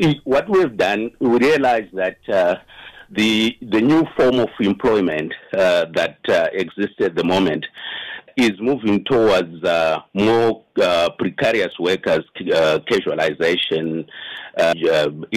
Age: 50-69